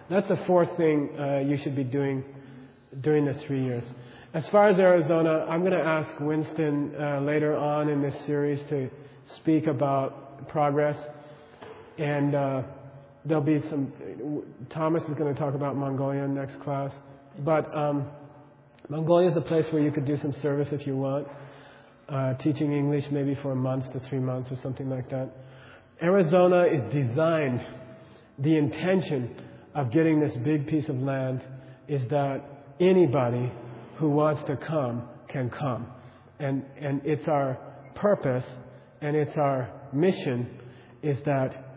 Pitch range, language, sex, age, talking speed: 130-150 Hz, English, male, 40-59, 155 wpm